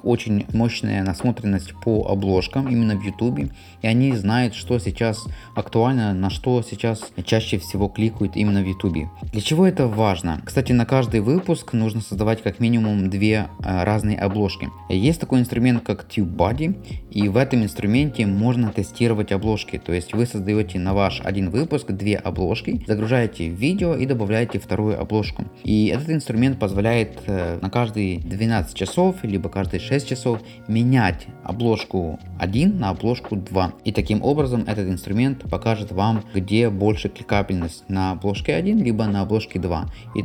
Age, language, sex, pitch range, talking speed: 20-39, Russian, male, 95-120 Hz, 155 wpm